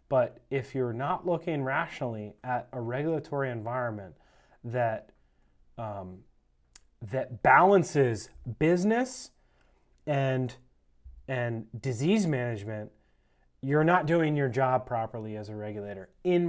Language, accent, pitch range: English, American, 105-135 Hz